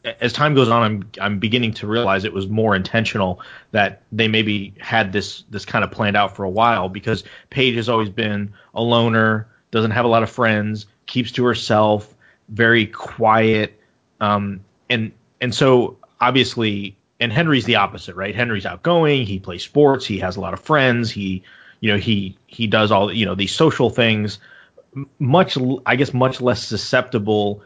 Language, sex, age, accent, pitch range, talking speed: English, male, 30-49, American, 100-120 Hz, 180 wpm